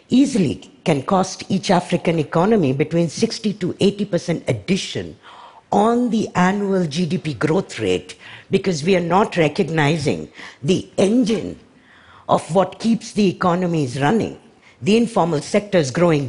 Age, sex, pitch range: 60-79, female, 150-210 Hz